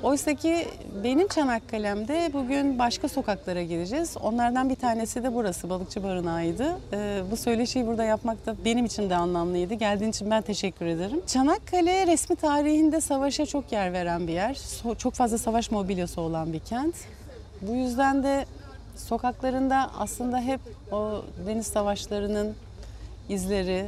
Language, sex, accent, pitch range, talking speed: Turkish, female, native, 190-270 Hz, 135 wpm